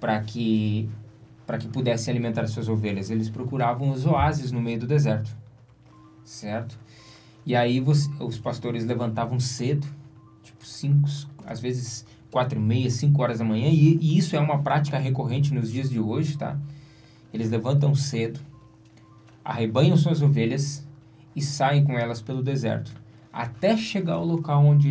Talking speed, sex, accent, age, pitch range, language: 150 wpm, male, Brazilian, 20-39, 115-145 Hz, Portuguese